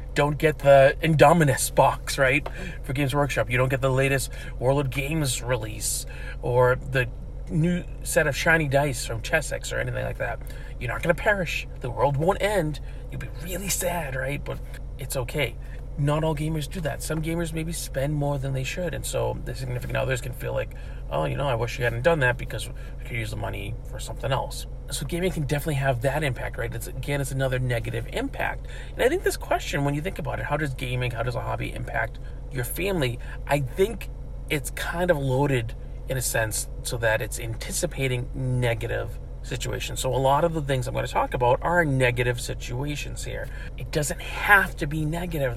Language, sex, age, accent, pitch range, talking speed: English, male, 40-59, American, 125-155 Hz, 205 wpm